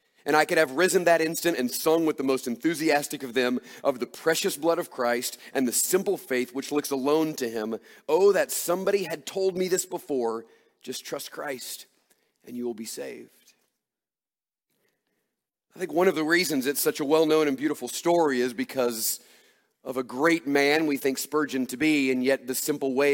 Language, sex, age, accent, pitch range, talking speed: English, male, 40-59, American, 135-190 Hz, 195 wpm